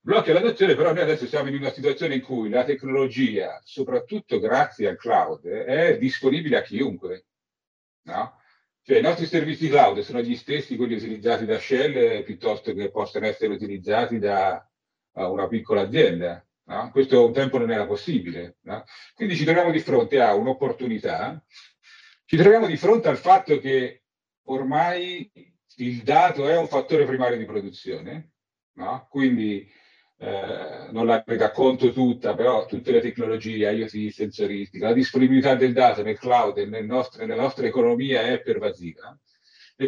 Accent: Italian